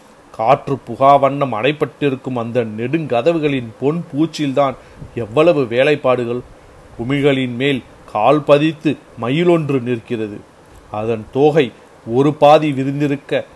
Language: Tamil